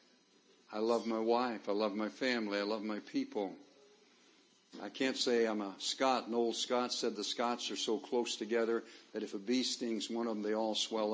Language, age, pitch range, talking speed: English, 60-79, 110-130 Hz, 210 wpm